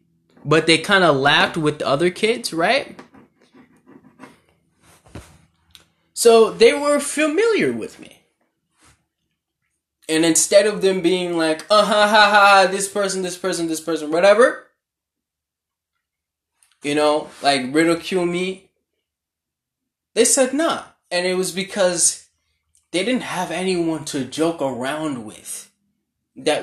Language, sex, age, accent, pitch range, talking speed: English, male, 10-29, American, 135-195 Hz, 120 wpm